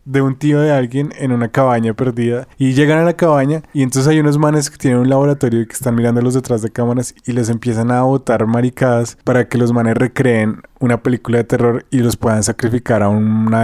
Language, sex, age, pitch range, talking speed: Spanish, male, 20-39, 115-140 Hz, 225 wpm